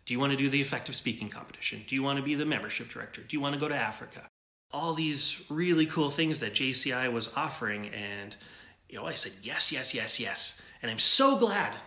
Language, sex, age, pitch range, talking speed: English, male, 30-49, 120-165 Hz, 235 wpm